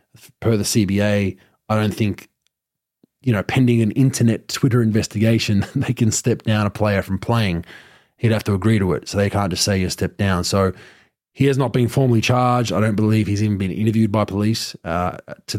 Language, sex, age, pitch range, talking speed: English, male, 20-39, 95-115 Hz, 205 wpm